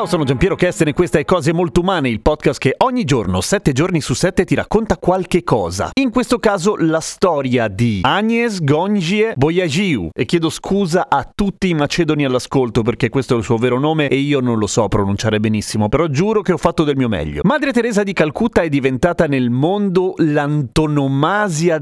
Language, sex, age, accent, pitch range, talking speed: Italian, male, 40-59, native, 125-185 Hz, 200 wpm